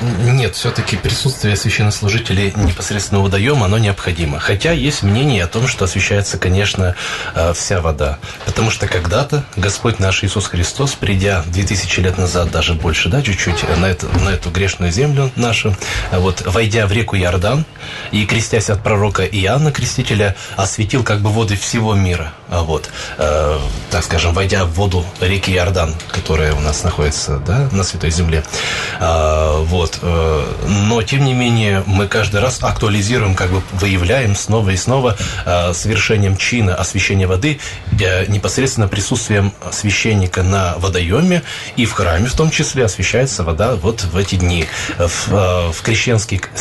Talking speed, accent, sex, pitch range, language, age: 145 wpm, native, male, 90-115 Hz, Russian, 20-39